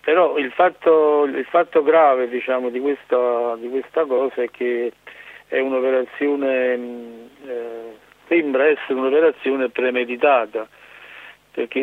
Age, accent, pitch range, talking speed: 50-69, native, 125-135 Hz, 110 wpm